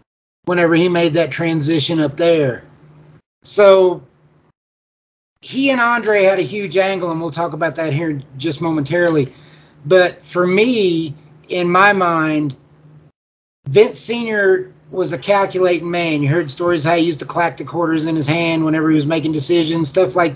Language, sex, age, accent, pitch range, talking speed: English, male, 30-49, American, 155-185 Hz, 160 wpm